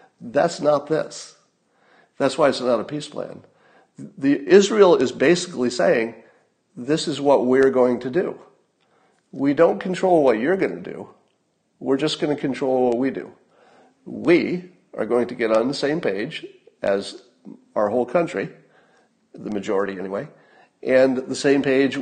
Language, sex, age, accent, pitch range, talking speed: English, male, 50-69, American, 115-170 Hz, 155 wpm